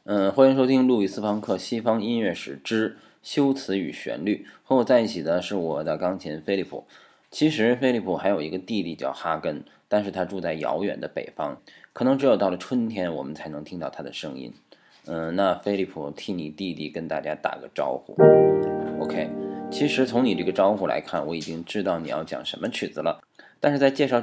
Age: 20-39